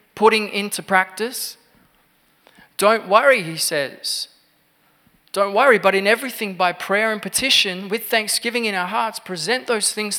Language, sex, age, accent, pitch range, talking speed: English, male, 20-39, Australian, 160-215 Hz, 140 wpm